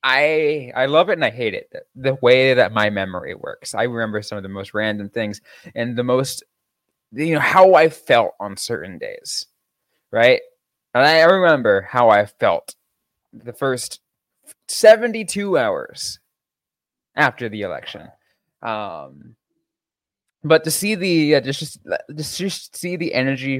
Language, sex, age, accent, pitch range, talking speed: English, male, 20-39, American, 105-155 Hz, 150 wpm